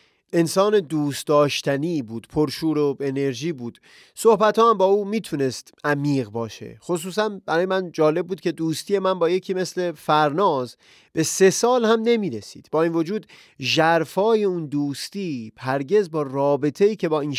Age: 30-49